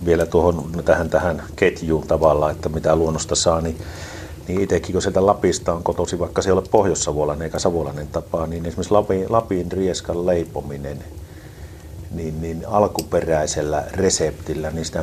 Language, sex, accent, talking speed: Finnish, male, native, 150 wpm